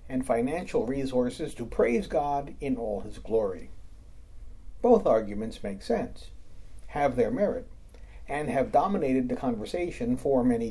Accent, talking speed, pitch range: American, 135 wpm, 95-155 Hz